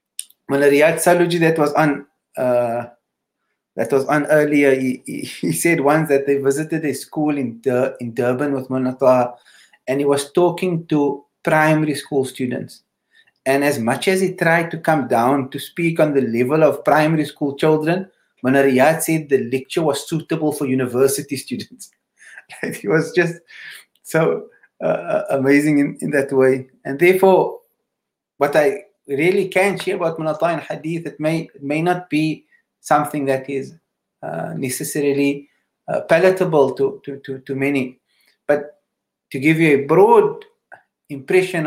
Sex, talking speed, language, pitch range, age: male, 155 wpm, English, 135-160 Hz, 30-49